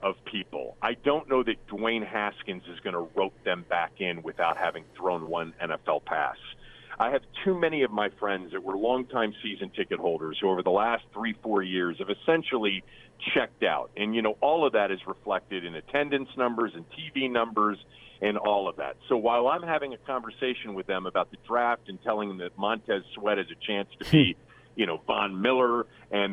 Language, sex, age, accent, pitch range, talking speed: English, male, 40-59, American, 105-135 Hz, 205 wpm